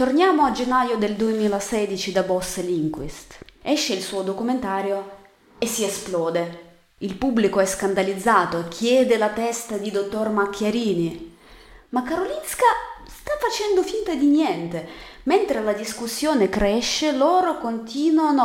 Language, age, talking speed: Italian, 30-49, 125 wpm